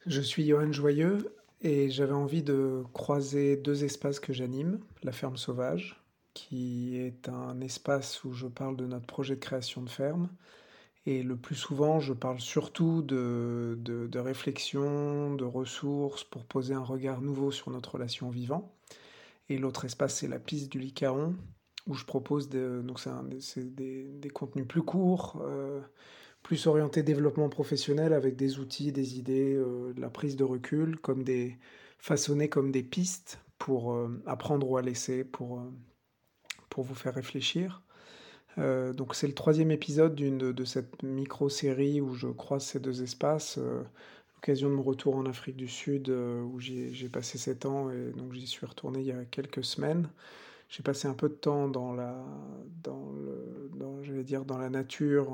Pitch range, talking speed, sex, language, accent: 130-145 Hz, 175 wpm, male, French, French